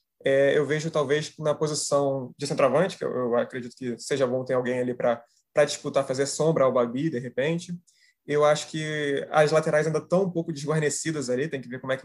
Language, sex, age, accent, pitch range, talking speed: Portuguese, male, 20-39, Brazilian, 130-155 Hz, 215 wpm